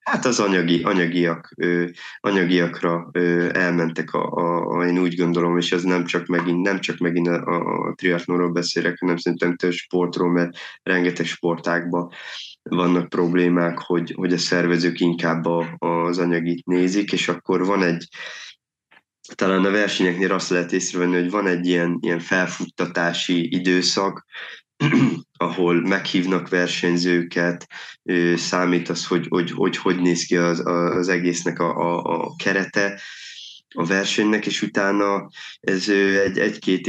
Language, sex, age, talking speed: Hungarian, male, 20-39, 135 wpm